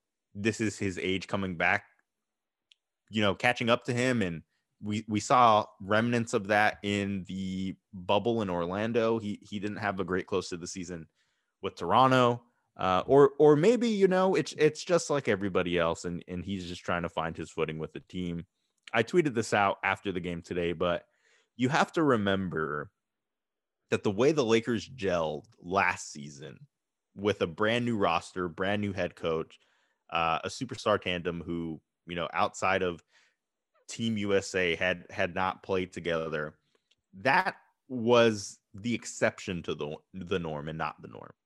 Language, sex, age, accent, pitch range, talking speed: English, male, 20-39, American, 85-110 Hz, 170 wpm